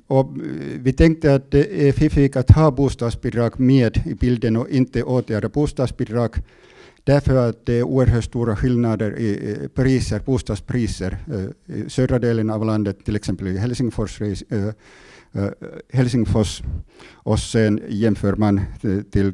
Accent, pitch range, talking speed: Finnish, 100-130 Hz, 125 wpm